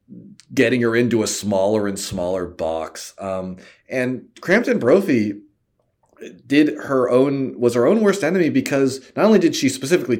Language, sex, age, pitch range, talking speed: English, male, 30-49, 120-180 Hz, 155 wpm